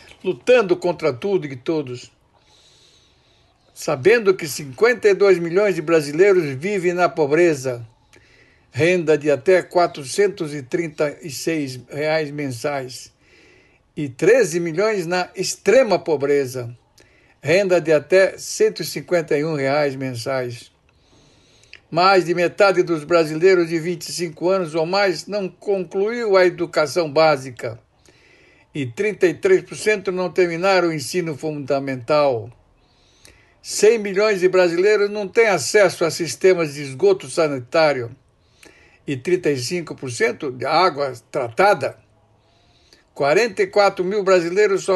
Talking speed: 100 wpm